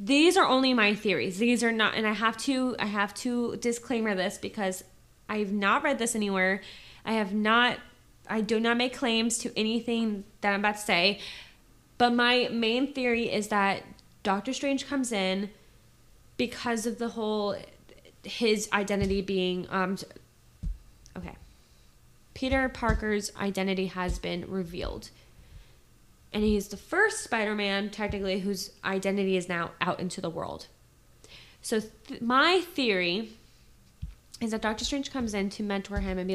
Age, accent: 20-39, American